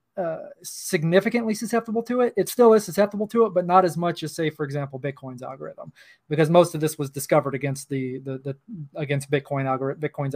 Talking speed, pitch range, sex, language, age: 205 wpm, 140-175 Hz, male, English, 20-39